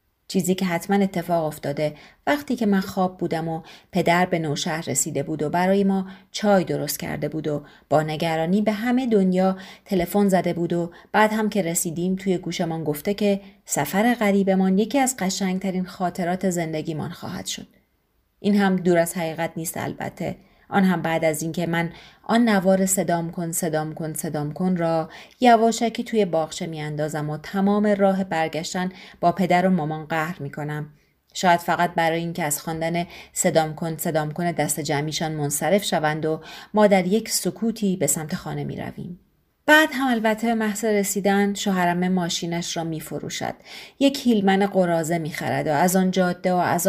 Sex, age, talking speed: female, 30-49, 165 wpm